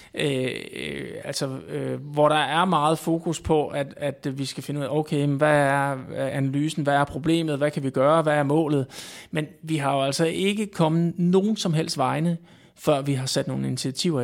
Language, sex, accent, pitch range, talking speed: Danish, male, native, 135-160 Hz, 180 wpm